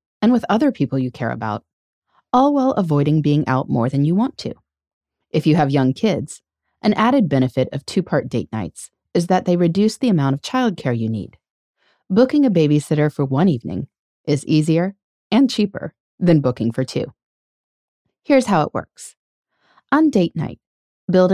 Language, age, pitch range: English, 30-49, 140-215 Hz